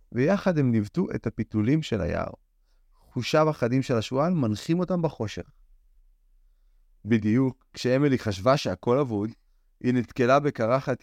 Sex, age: male, 30-49